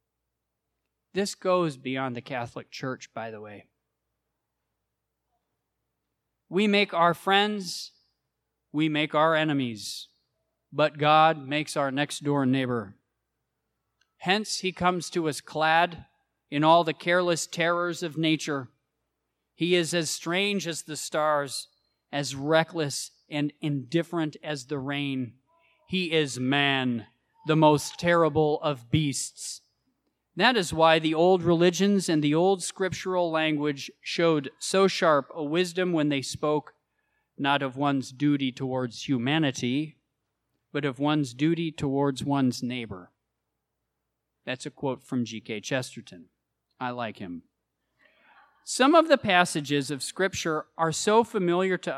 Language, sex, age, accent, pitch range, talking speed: English, male, 40-59, American, 130-170 Hz, 125 wpm